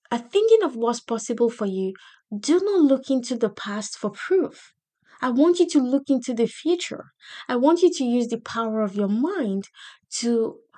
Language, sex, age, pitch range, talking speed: English, female, 20-39, 205-255 Hz, 190 wpm